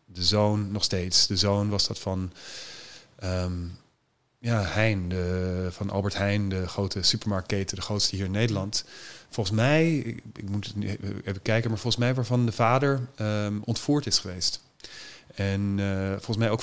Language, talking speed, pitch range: Dutch, 165 wpm, 100-115 Hz